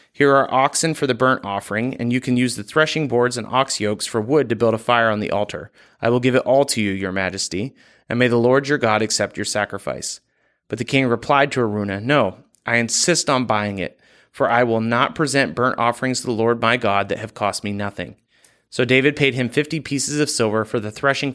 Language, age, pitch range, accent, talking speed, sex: English, 30-49, 105-130 Hz, American, 235 wpm, male